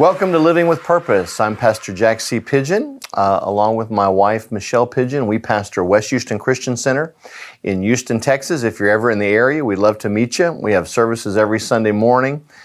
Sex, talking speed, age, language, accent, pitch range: male, 205 wpm, 50-69, English, American, 100-125 Hz